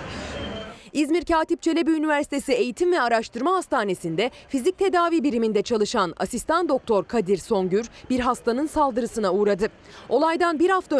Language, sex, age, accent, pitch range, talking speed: Turkish, female, 30-49, native, 205-325 Hz, 125 wpm